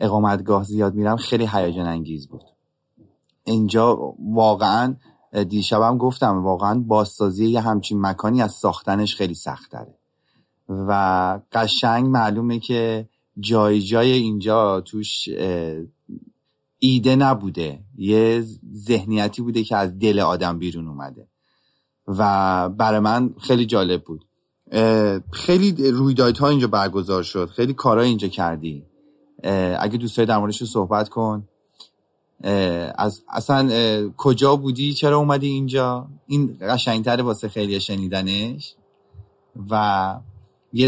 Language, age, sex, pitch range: Persian, 30-49, male, 100-130 Hz